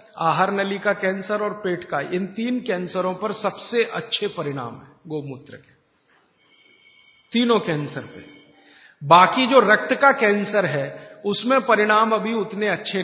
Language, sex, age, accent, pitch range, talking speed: Hindi, male, 50-69, native, 155-210 Hz, 145 wpm